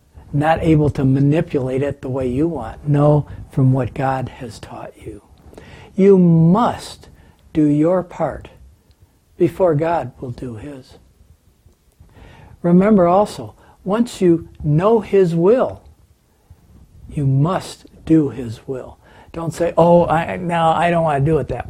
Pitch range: 130-180 Hz